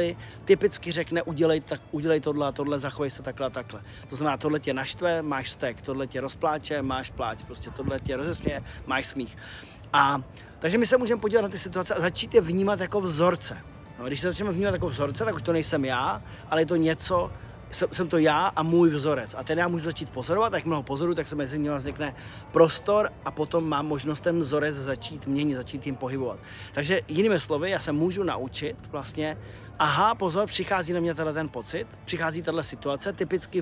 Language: Czech